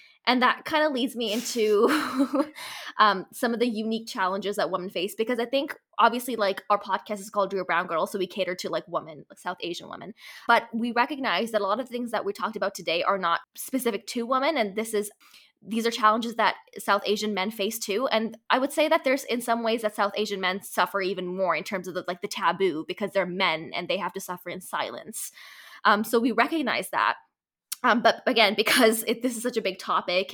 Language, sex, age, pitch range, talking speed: English, female, 20-39, 190-245 Hz, 230 wpm